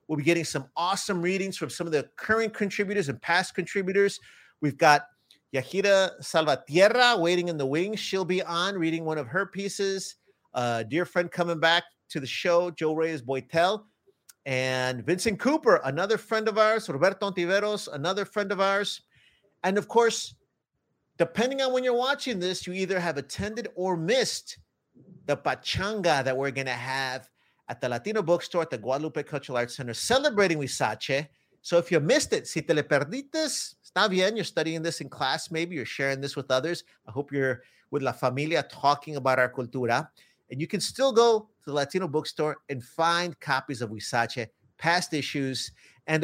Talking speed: 180 wpm